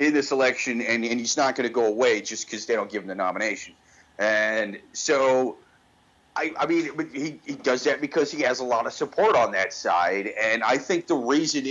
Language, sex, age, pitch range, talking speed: English, male, 30-49, 115-145 Hz, 220 wpm